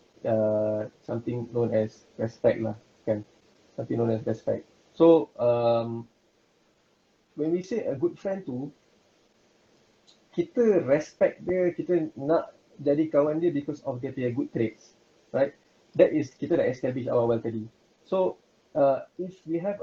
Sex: male